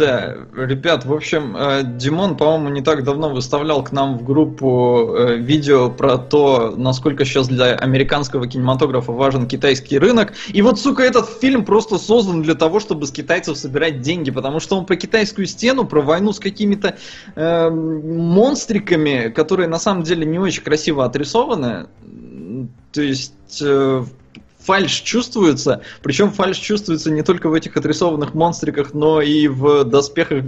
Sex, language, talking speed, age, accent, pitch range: male, Russian, 150 wpm, 20-39, native, 135-170 Hz